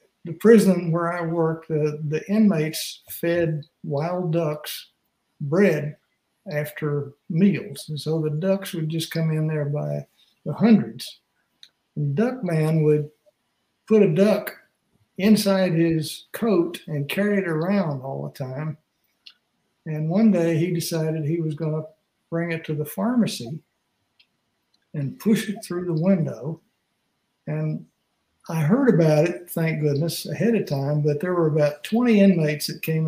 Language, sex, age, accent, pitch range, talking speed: English, male, 60-79, American, 155-190 Hz, 145 wpm